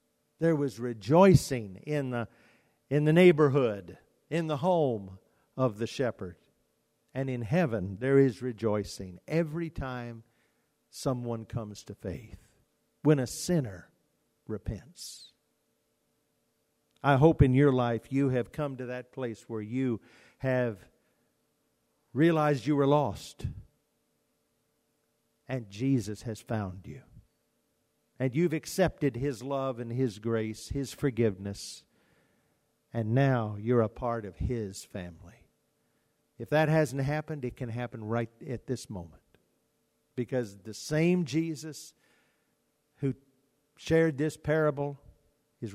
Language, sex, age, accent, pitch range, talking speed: English, male, 50-69, American, 115-150 Hz, 120 wpm